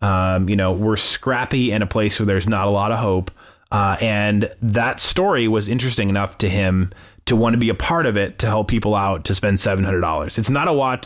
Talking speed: 245 wpm